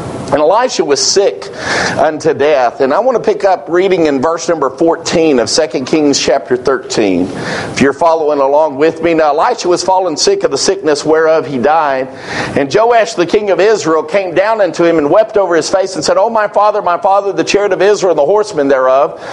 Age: 50-69